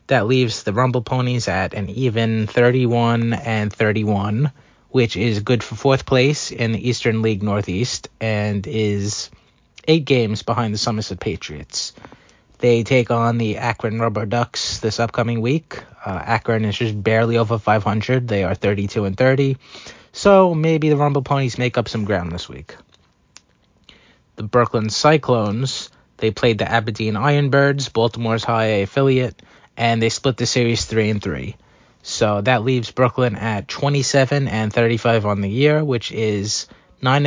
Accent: American